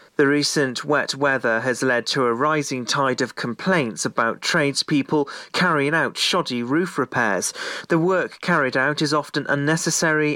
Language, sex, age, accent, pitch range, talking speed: English, male, 40-59, British, 130-155 Hz, 150 wpm